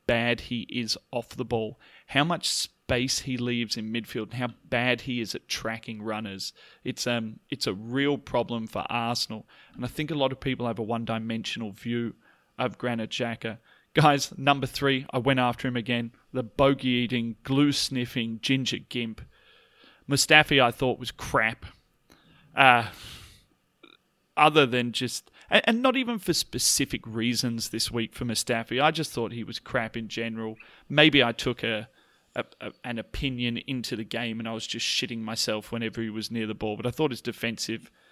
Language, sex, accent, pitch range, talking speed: English, male, Australian, 115-135 Hz, 175 wpm